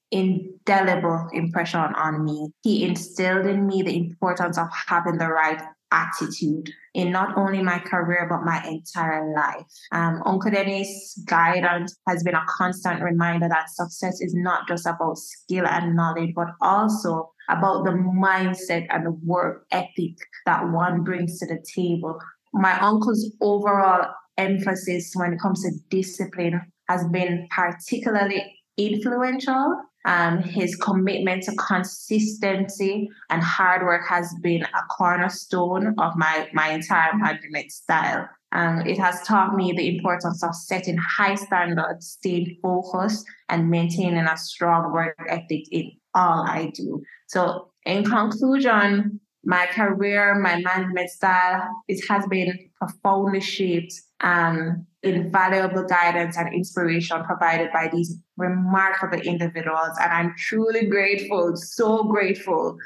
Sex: female